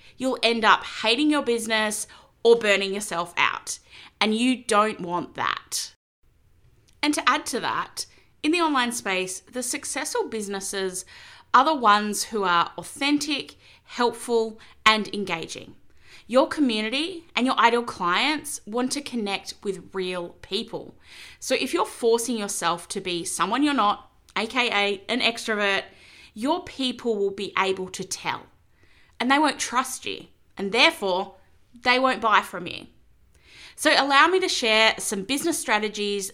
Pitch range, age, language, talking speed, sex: 190-260 Hz, 20-39, English, 145 wpm, female